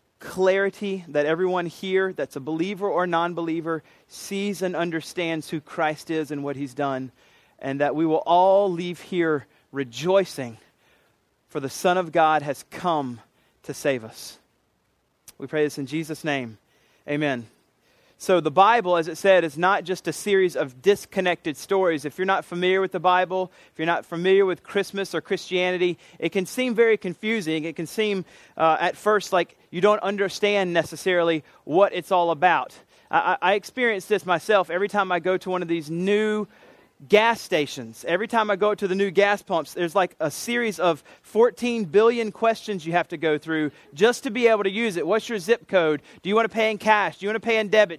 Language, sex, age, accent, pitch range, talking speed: English, male, 30-49, American, 160-205 Hz, 195 wpm